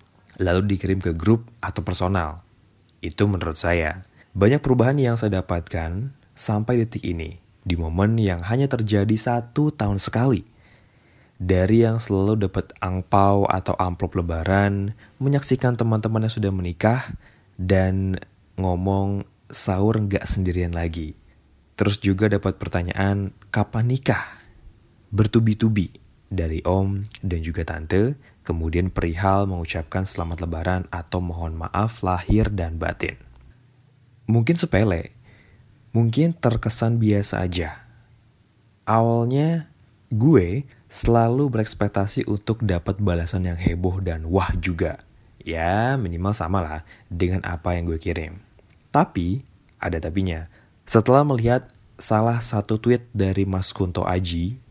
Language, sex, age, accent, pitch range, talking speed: Indonesian, male, 20-39, native, 90-110 Hz, 115 wpm